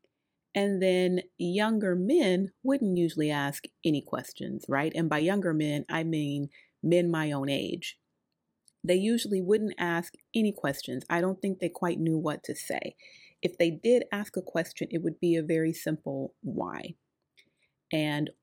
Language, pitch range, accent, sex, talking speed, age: English, 150-195 Hz, American, female, 160 wpm, 30-49